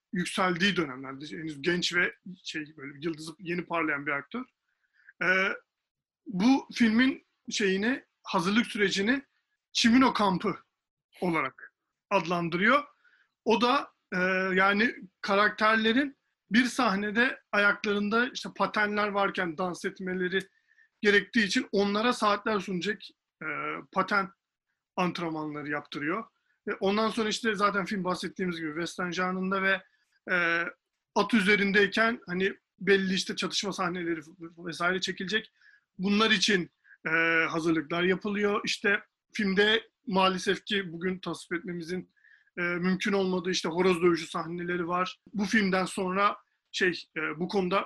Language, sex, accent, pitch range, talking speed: Turkish, male, native, 175-215 Hz, 110 wpm